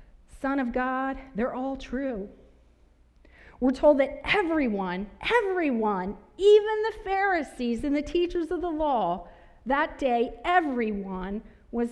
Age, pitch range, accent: 40-59, 170-255 Hz, American